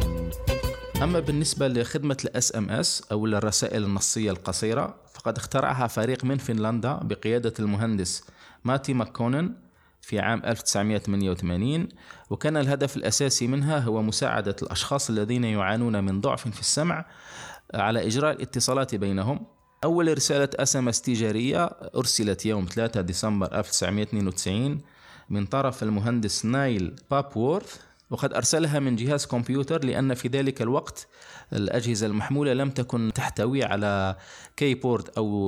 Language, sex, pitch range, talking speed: Arabic, male, 105-135 Hz, 120 wpm